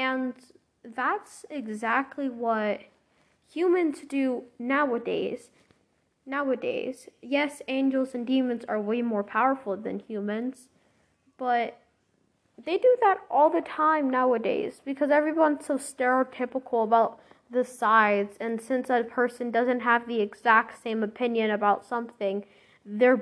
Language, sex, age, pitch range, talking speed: English, female, 10-29, 230-280 Hz, 120 wpm